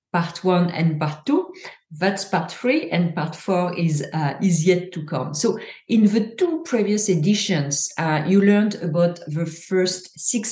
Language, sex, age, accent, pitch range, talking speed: English, female, 40-59, French, 160-205 Hz, 170 wpm